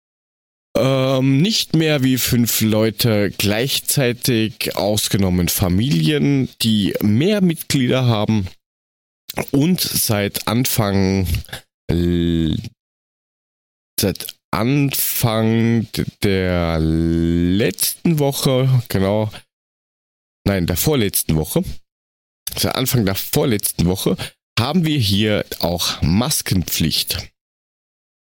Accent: German